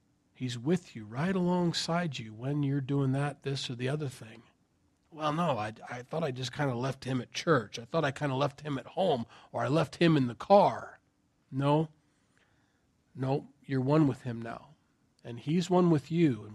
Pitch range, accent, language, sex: 120-155 Hz, American, English, male